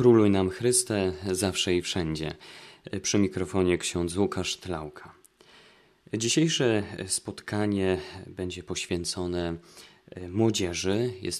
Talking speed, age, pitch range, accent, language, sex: 90 wpm, 20-39, 90-110 Hz, native, Polish, male